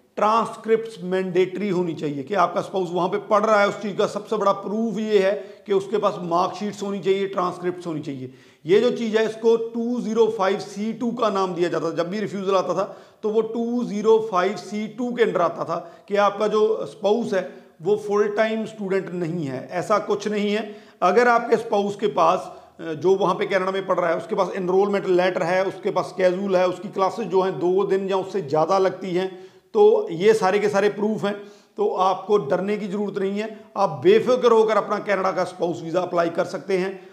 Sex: male